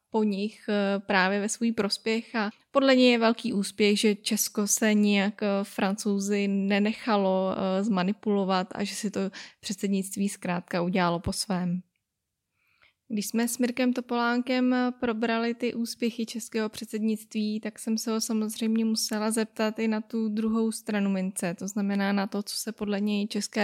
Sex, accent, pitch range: female, native, 200-220 Hz